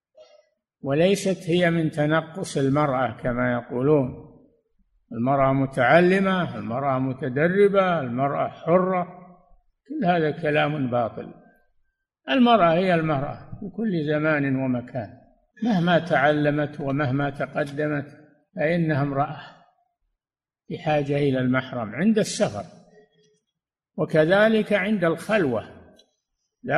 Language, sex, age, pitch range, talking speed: Arabic, male, 60-79, 140-190 Hz, 85 wpm